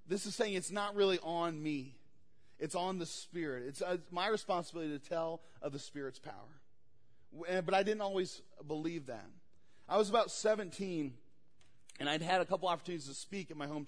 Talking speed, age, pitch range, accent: 190 wpm, 40-59, 145-205 Hz, American